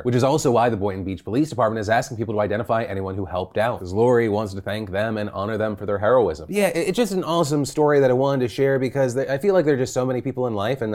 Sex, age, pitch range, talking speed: male, 30-49, 110-145 Hz, 295 wpm